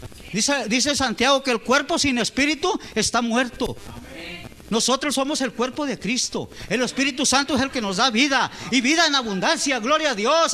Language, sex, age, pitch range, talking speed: Spanish, male, 40-59, 225-290 Hz, 180 wpm